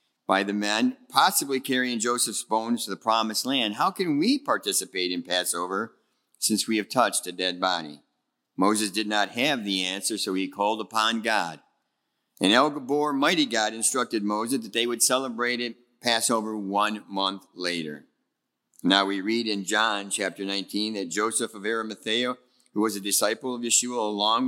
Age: 50-69